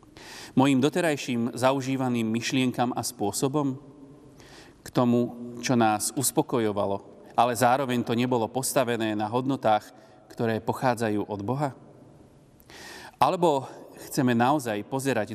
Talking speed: 100 wpm